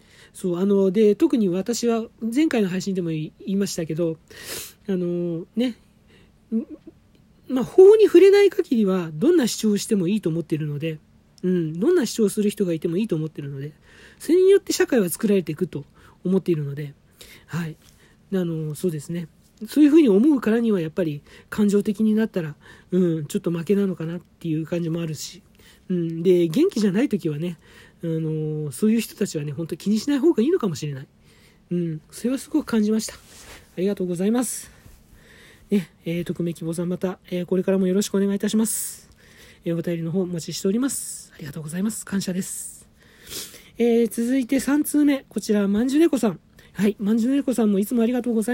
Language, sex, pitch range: Japanese, male, 170-225 Hz